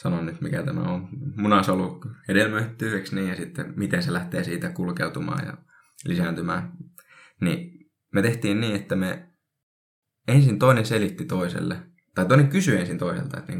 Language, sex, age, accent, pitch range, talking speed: Finnish, male, 20-39, native, 95-150 Hz, 145 wpm